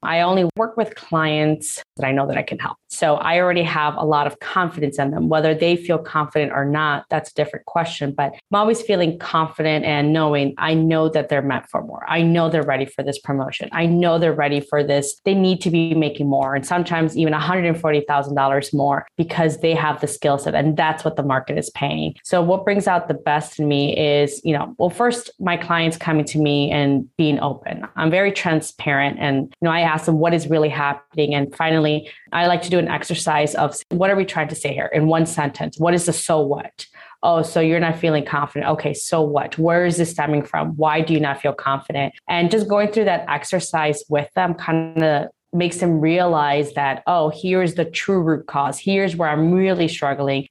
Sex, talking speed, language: female, 220 wpm, English